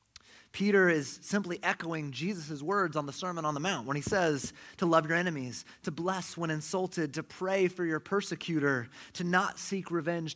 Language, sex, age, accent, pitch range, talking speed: English, male, 30-49, American, 130-170 Hz, 185 wpm